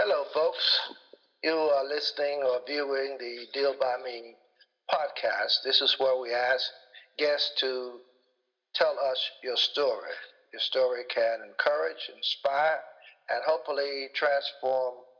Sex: male